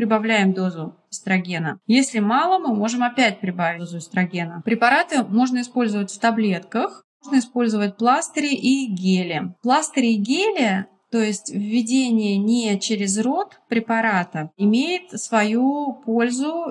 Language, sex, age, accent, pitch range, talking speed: Russian, female, 20-39, native, 205-250 Hz, 120 wpm